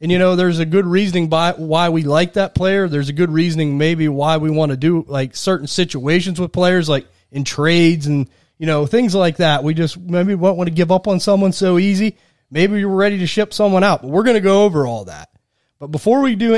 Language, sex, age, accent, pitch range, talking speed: English, male, 30-49, American, 150-185 Hz, 245 wpm